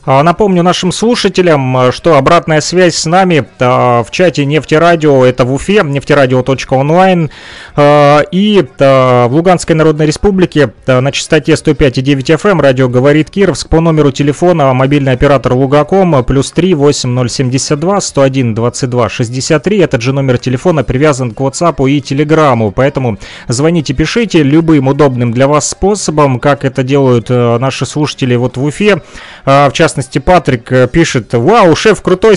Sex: male